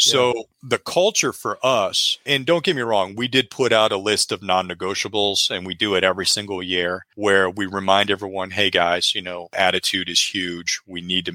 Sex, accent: male, American